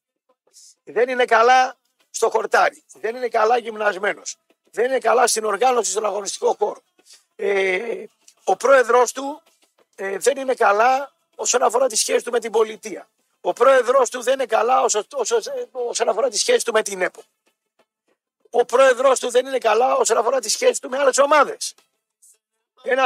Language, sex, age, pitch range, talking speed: Greek, male, 50-69, 225-295 Hz, 165 wpm